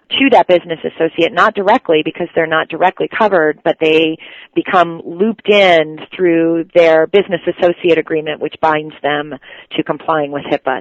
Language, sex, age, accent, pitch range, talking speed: English, female, 40-59, American, 150-180 Hz, 155 wpm